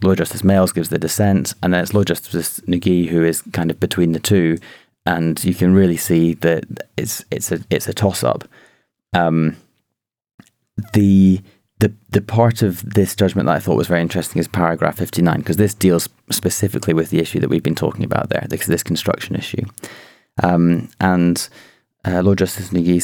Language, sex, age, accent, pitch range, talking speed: English, male, 30-49, British, 85-100 Hz, 185 wpm